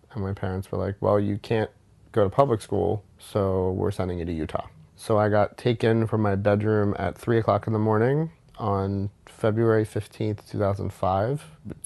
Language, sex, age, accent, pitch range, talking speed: English, male, 30-49, American, 100-115 Hz, 175 wpm